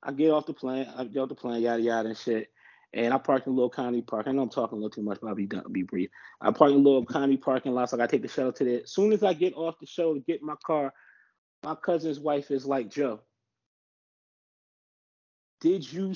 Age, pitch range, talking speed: 30-49, 130-170 Hz, 265 wpm